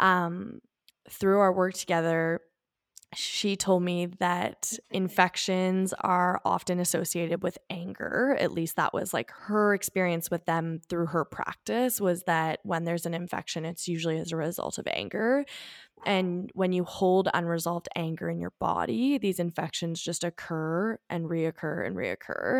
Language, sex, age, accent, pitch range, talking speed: English, female, 10-29, American, 170-205 Hz, 150 wpm